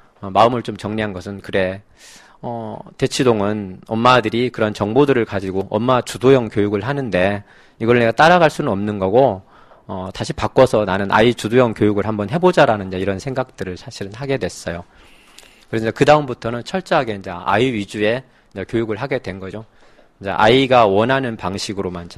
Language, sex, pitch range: Korean, male, 95-120 Hz